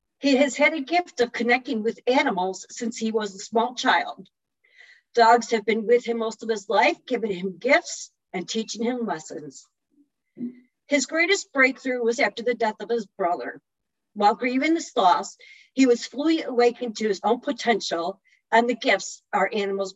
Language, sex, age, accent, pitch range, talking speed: English, female, 50-69, American, 215-275 Hz, 175 wpm